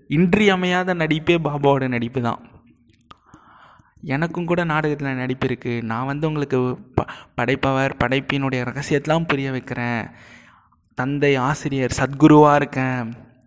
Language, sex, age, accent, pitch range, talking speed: Tamil, male, 20-39, native, 130-160 Hz, 105 wpm